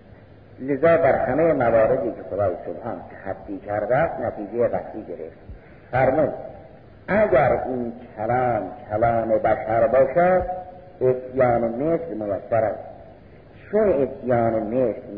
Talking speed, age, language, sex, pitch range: 115 wpm, 50-69, Persian, male, 105-135 Hz